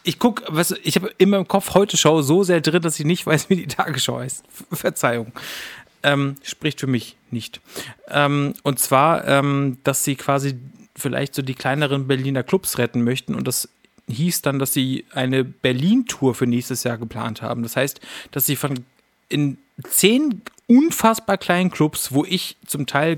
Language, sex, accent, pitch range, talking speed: German, male, German, 130-160 Hz, 185 wpm